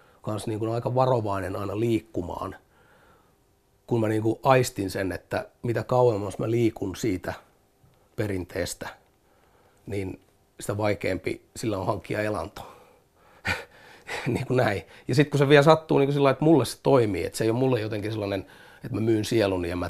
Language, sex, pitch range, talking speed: Finnish, male, 100-125 Hz, 165 wpm